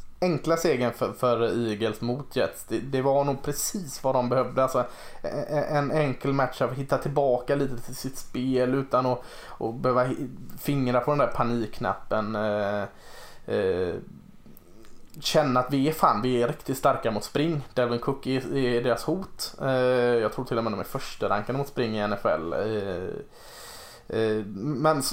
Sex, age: male, 20-39